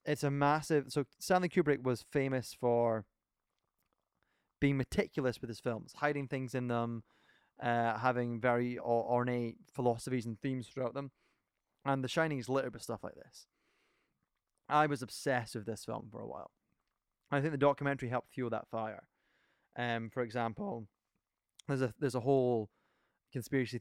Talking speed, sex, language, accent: 160 wpm, male, English, British